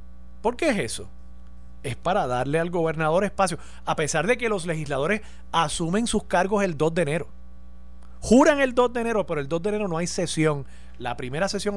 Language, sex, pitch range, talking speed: Spanish, male, 115-190 Hz, 200 wpm